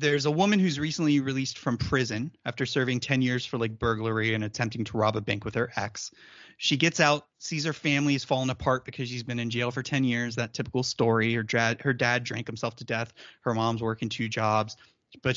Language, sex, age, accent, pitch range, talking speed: English, male, 30-49, American, 120-140 Hz, 225 wpm